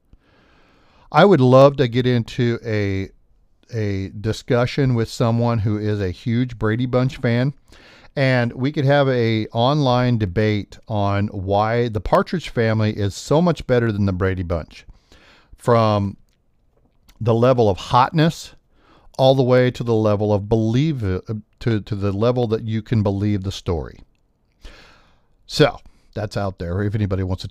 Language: Japanese